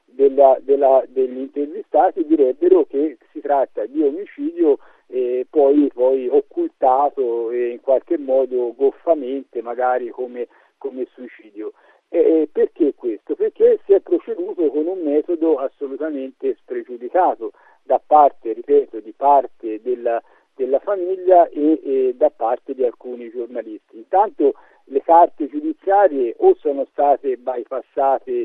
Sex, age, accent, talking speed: male, 50-69, native, 125 wpm